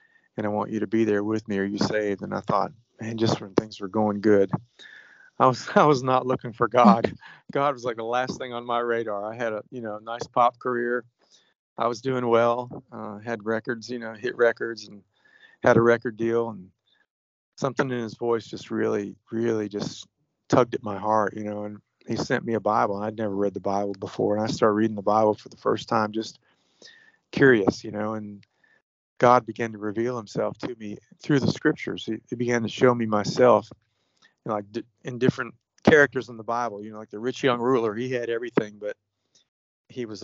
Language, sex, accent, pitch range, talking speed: English, male, American, 105-120 Hz, 215 wpm